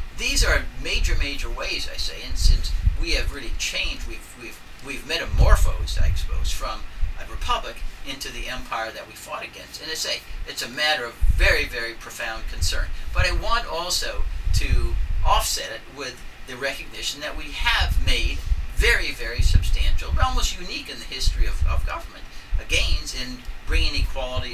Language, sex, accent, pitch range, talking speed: English, male, American, 75-95 Hz, 170 wpm